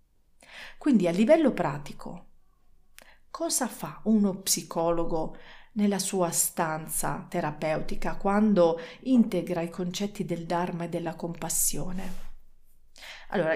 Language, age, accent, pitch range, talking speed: Italian, 40-59, native, 170-210 Hz, 95 wpm